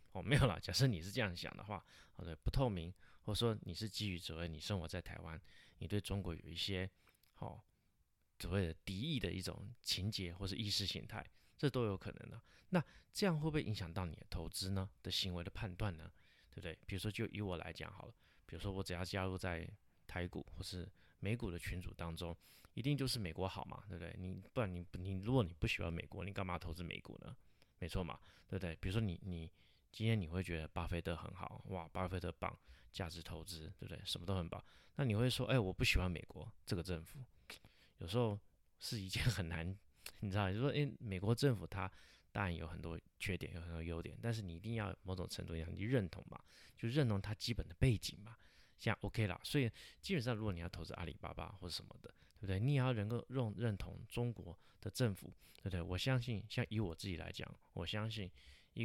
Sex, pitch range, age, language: male, 85-110 Hz, 20-39, Chinese